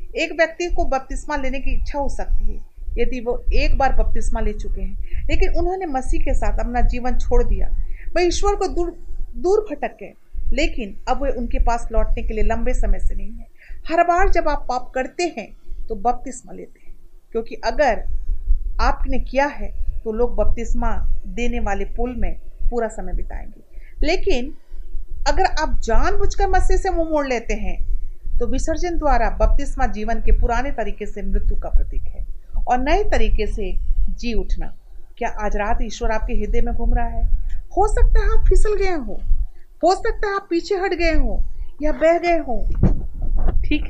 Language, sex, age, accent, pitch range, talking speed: Hindi, female, 40-59, native, 230-345 Hz, 180 wpm